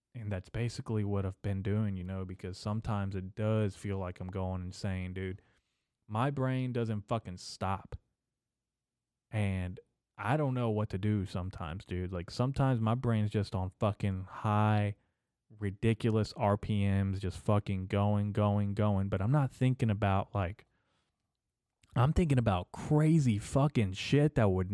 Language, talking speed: English, 150 wpm